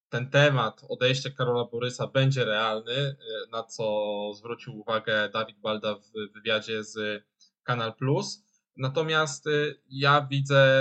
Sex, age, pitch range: male, 10-29, 120-150 Hz